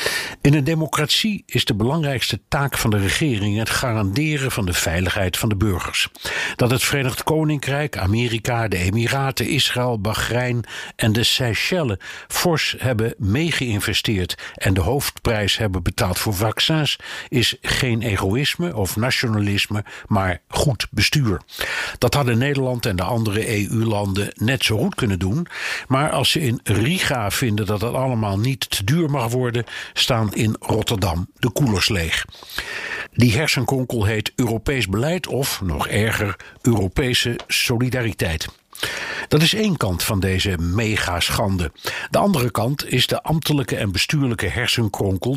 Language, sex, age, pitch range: Dutch, male, 60-79, 105-135 Hz